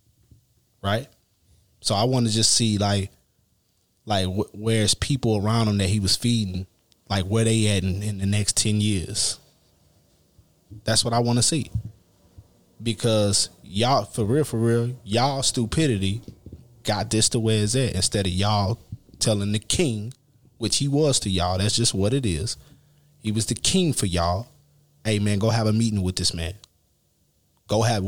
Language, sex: English, male